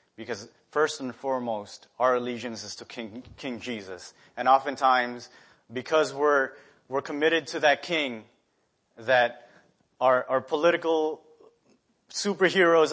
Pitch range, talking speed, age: 120-150 Hz, 115 wpm, 30-49